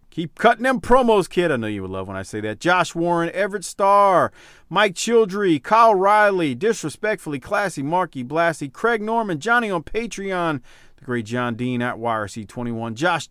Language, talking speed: English, 170 wpm